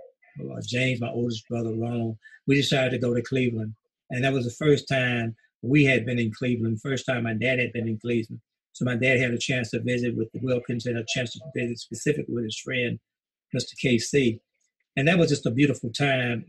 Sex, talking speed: male, 215 wpm